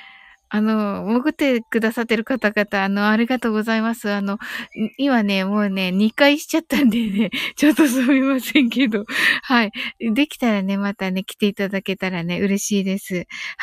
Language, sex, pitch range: Japanese, female, 195-255 Hz